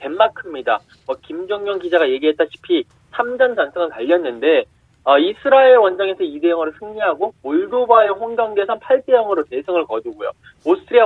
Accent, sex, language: native, male, Korean